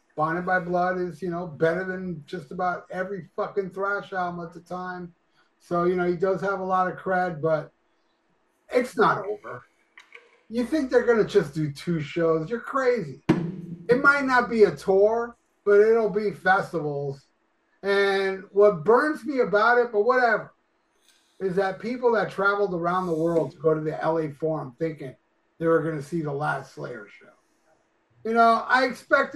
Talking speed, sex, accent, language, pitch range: 180 wpm, male, American, English, 170-225 Hz